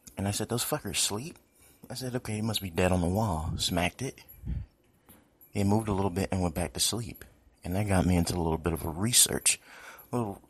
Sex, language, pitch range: male, English, 85-95 Hz